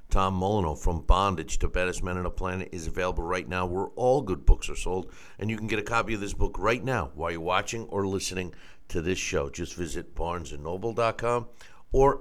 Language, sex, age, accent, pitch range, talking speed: English, male, 50-69, American, 90-115 Hz, 210 wpm